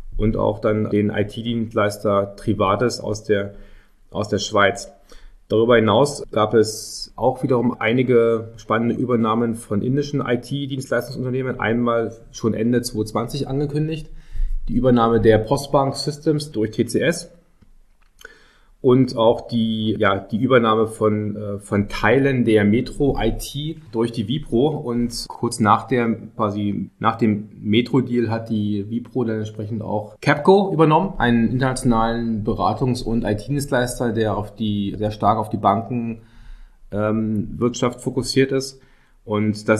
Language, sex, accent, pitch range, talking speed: German, male, German, 105-125 Hz, 125 wpm